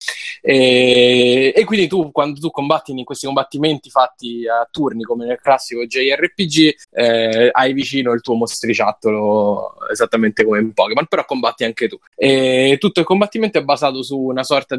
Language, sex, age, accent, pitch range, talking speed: Italian, male, 20-39, native, 115-150 Hz, 160 wpm